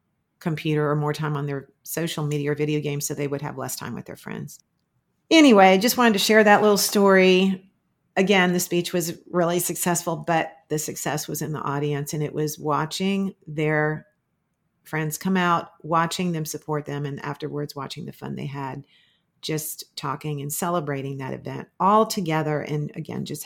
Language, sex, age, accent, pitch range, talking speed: English, female, 40-59, American, 155-205 Hz, 185 wpm